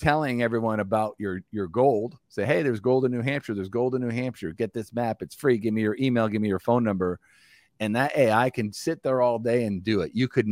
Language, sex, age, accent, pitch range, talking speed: English, male, 50-69, American, 95-120 Hz, 255 wpm